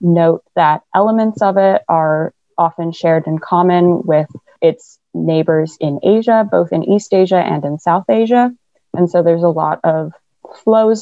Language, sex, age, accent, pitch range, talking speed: English, female, 20-39, American, 155-190 Hz, 165 wpm